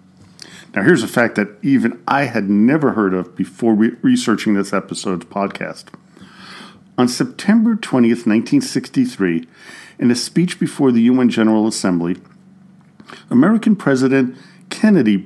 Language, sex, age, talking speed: English, male, 50-69, 125 wpm